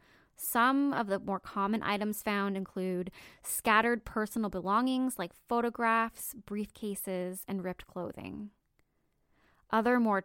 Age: 10-29